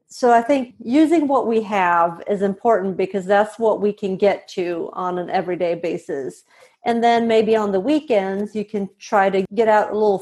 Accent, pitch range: American, 195-225 Hz